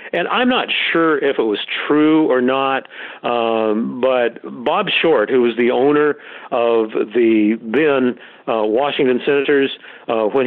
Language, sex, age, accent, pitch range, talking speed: English, male, 50-69, American, 115-140 Hz, 150 wpm